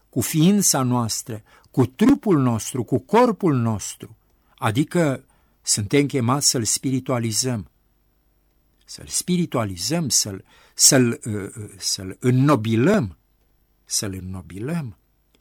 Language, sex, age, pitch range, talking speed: Romanian, male, 60-79, 125-180 Hz, 90 wpm